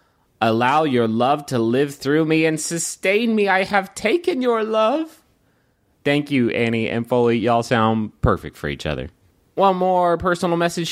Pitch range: 120-190 Hz